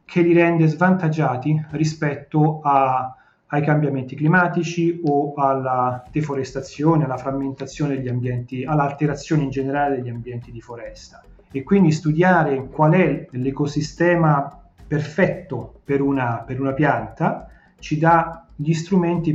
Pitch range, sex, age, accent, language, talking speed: 135-165 Hz, male, 30-49, native, Italian, 115 wpm